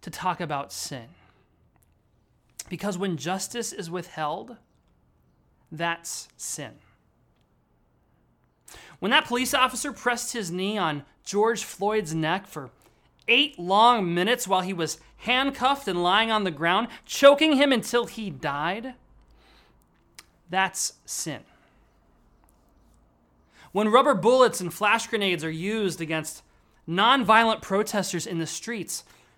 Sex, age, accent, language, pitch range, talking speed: male, 30-49, American, English, 160-235 Hz, 115 wpm